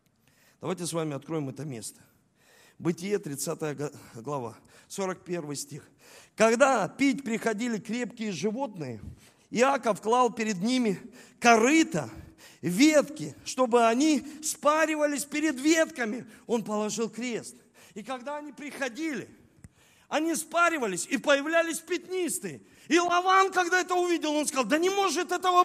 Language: Russian